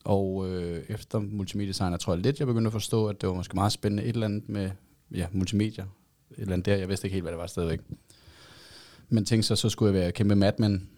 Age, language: 20-39, Danish